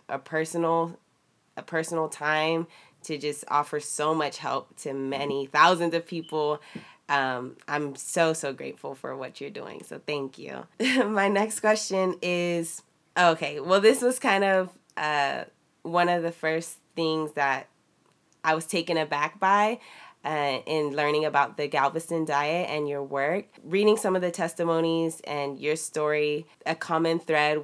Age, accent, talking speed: 20-39, American, 155 wpm